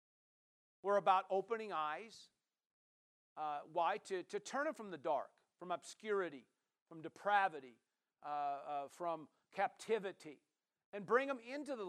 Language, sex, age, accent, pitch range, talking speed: English, male, 50-69, American, 215-290 Hz, 130 wpm